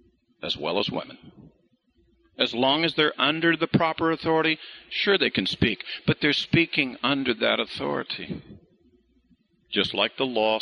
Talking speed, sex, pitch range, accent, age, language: 145 wpm, male, 130-175 Hz, American, 50-69, English